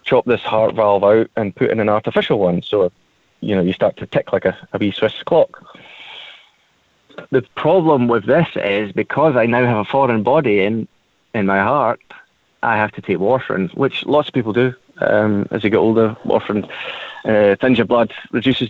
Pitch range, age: 105-135 Hz, 30-49